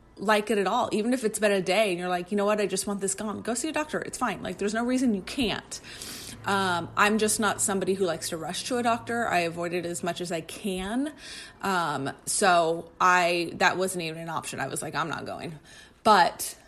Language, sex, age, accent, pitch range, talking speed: English, female, 30-49, American, 175-205 Hz, 245 wpm